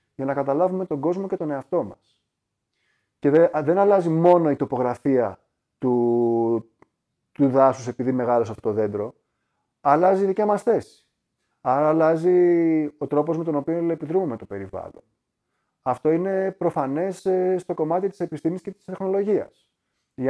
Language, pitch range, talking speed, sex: Greek, 125-175 Hz, 140 wpm, male